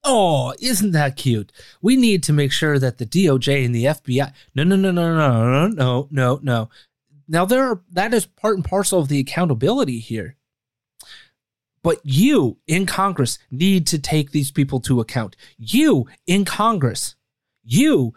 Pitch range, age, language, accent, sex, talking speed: 130-205 Hz, 30-49, English, American, male, 170 wpm